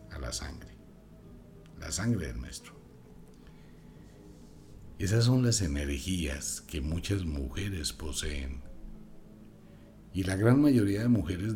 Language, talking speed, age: Spanish, 110 wpm, 60-79